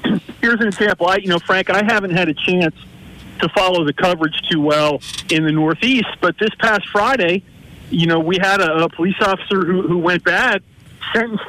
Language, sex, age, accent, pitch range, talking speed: English, male, 40-59, American, 165-200 Hz, 195 wpm